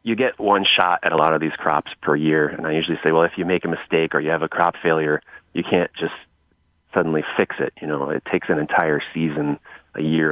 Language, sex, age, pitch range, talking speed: English, male, 30-49, 80-95 Hz, 250 wpm